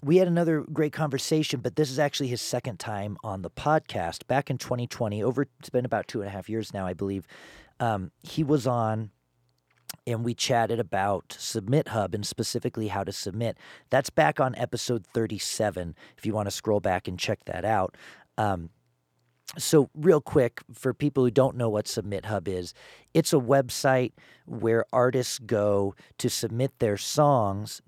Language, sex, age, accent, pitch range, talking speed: English, male, 40-59, American, 100-130 Hz, 180 wpm